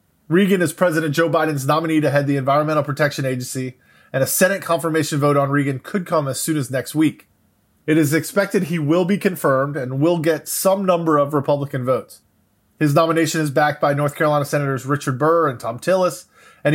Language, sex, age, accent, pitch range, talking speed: English, male, 20-39, American, 140-170 Hz, 195 wpm